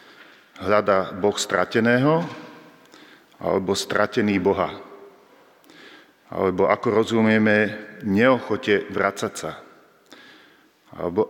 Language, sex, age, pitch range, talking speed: Slovak, male, 50-69, 95-115 Hz, 70 wpm